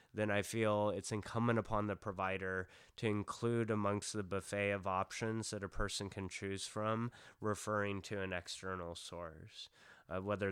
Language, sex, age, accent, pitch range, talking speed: English, male, 20-39, American, 95-105 Hz, 160 wpm